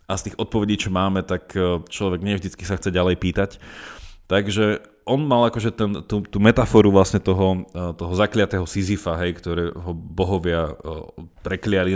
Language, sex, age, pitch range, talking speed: Slovak, male, 30-49, 90-110 Hz, 145 wpm